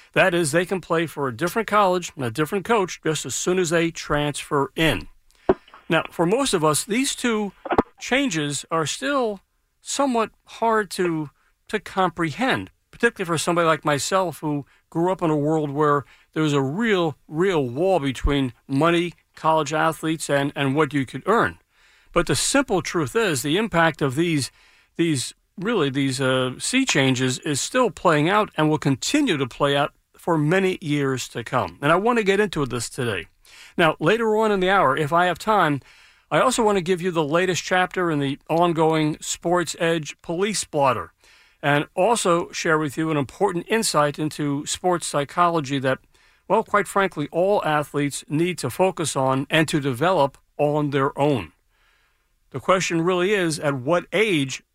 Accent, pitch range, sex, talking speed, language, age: American, 140-185 Hz, male, 175 wpm, English, 50-69